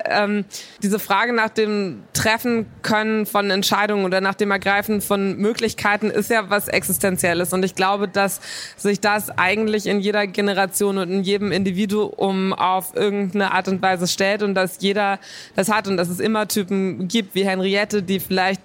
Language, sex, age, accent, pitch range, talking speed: German, female, 20-39, German, 195-210 Hz, 175 wpm